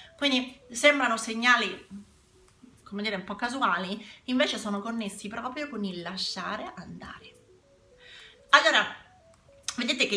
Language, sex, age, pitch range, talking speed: Italian, female, 30-49, 190-235 Hz, 110 wpm